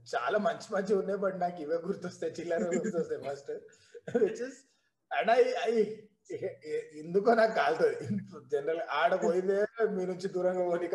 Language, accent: Telugu, native